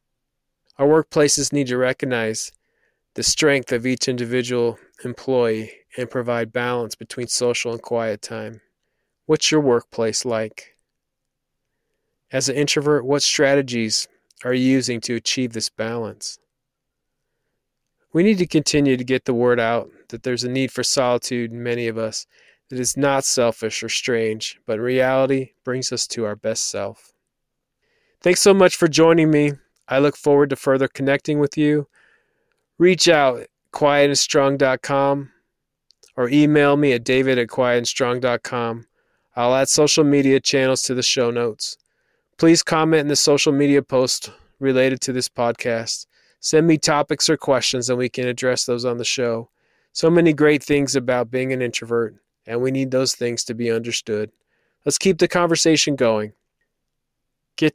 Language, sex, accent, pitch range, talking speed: English, male, American, 120-145 Hz, 155 wpm